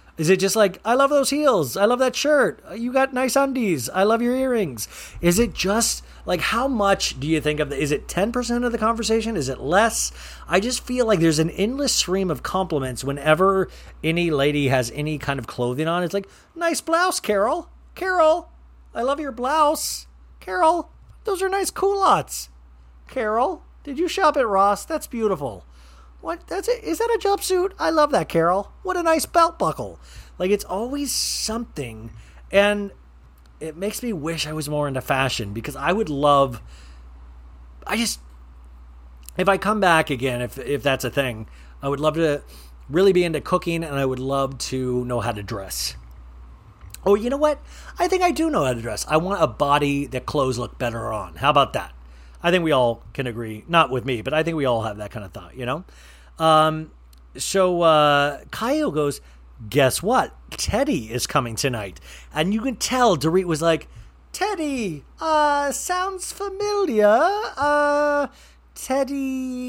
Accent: American